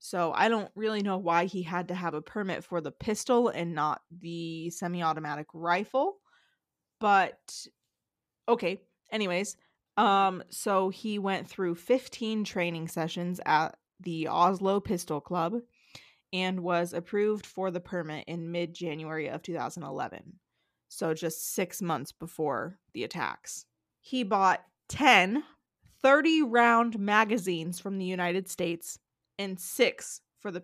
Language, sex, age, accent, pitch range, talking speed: English, female, 20-39, American, 170-205 Hz, 130 wpm